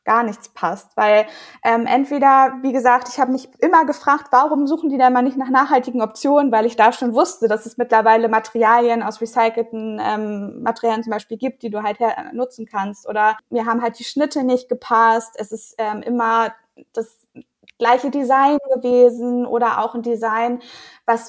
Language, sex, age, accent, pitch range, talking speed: German, female, 20-39, German, 220-255 Hz, 180 wpm